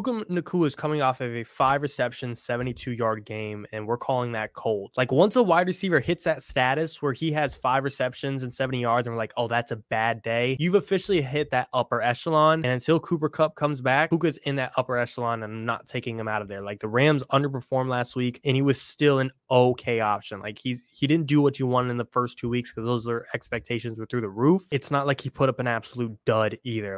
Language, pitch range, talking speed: English, 115-145 Hz, 240 wpm